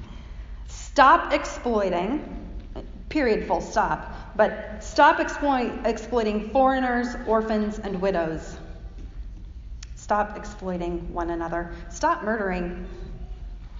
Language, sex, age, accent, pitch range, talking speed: English, female, 30-49, American, 205-270 Hz, 80 wpm